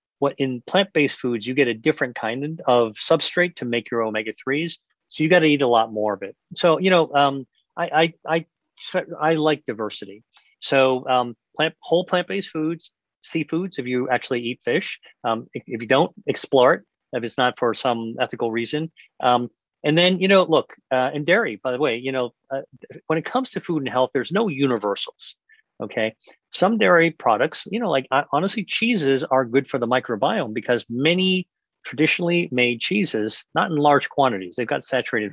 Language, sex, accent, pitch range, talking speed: English, male, American, 125-165 Hz, 190 wpm